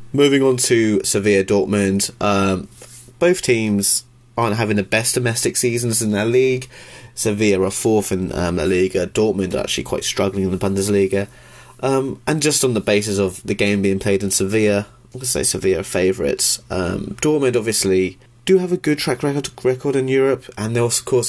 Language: English